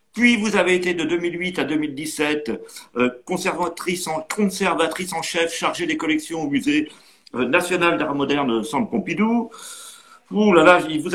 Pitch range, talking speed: 150-225 Hz, 155 wpm